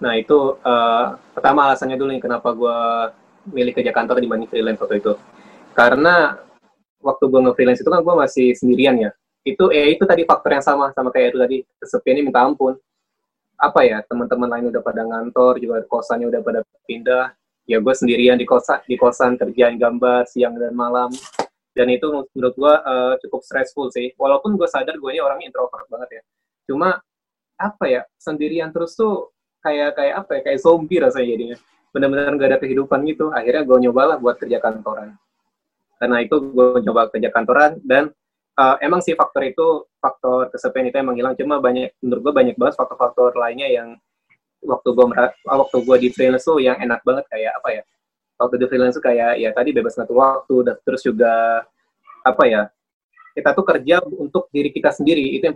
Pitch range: 120-140 Hz